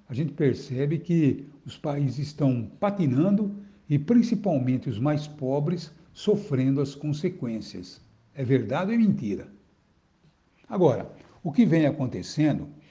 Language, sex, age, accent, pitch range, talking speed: Portuguese, male, 60-79, Brazilian, 135-165 Hz, 120 wpm